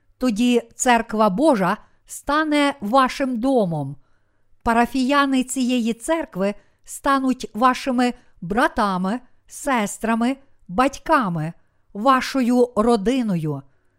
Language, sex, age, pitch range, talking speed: Ukrainian, female, 50-69, 200-270 Hz, 70 wpm